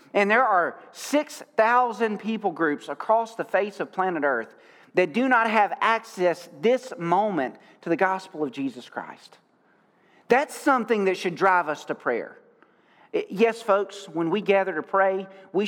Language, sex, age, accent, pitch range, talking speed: English, male, 40-59, American, 165-215 Hz, 155 wpm